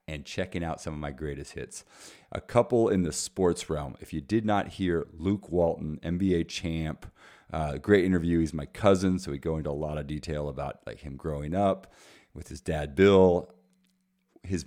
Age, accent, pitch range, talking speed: 40-59, American, 75-90 Hz, 190 wpm